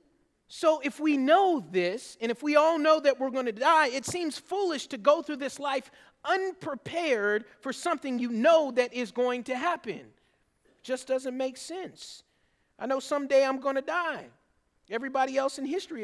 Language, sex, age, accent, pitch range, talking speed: English, male, 40-59, American, 200-270 Hz, 185 wpm